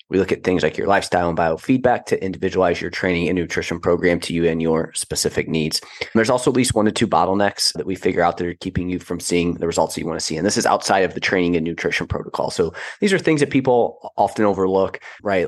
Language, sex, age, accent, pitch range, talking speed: English, male, 30-49, American, 90-115 Hz, 255 wpm